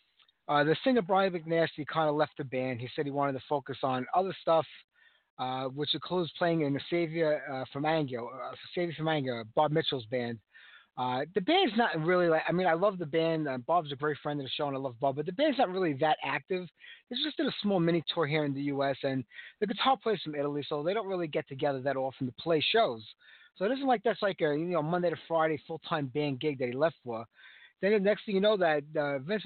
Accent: American